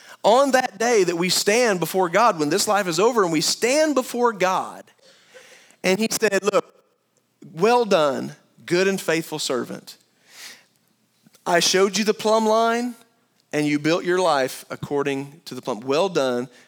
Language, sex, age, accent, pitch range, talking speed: English, male, 40-59, American, 150-205 Hz, 160 wpm